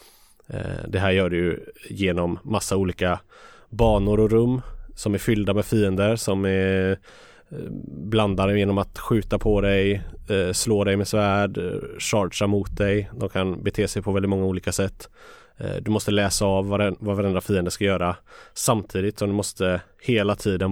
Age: 20-39